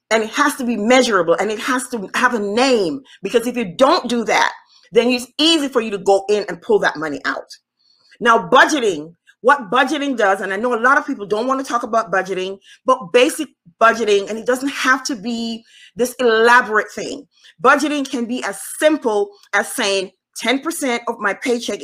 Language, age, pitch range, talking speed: English, 30-49, 195-255 Hz, 200 wpm